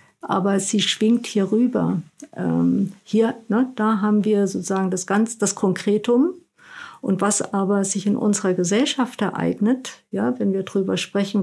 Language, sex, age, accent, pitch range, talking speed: German, female, 50-69, German, 180-220 Hz, 150 wpm